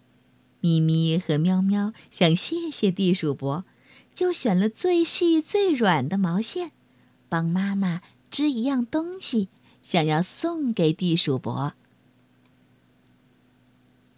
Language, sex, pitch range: Chinese, female, 160-255 Hz